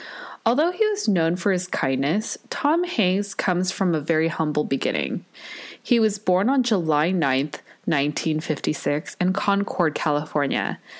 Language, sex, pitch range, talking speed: English, female, 160-225 Hz, 135 wpm